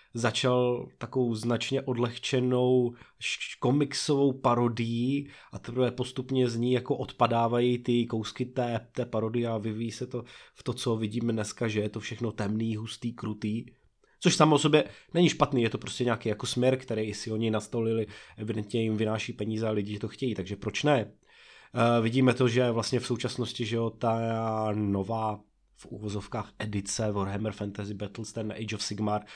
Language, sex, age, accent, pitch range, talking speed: Czech, male, 20-39, native, 110-125 Hz, 170 wpm